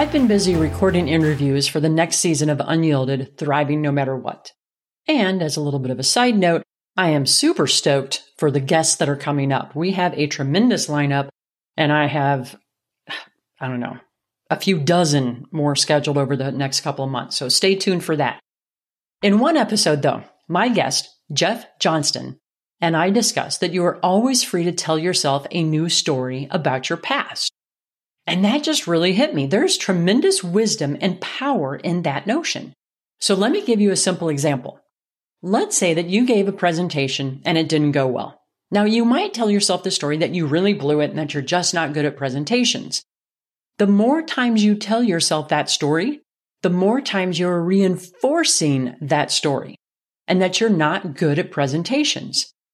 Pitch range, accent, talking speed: 145-200 Hz, American, 185 wpm